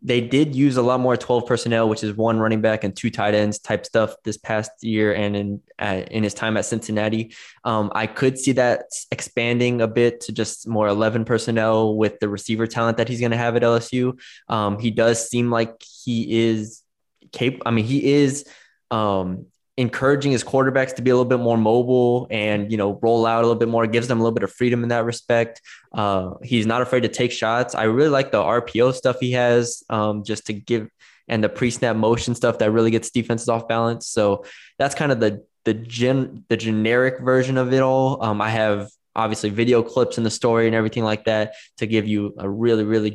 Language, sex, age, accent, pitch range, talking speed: English, male, 20-39, American, 110-125 Hz, 220 wpm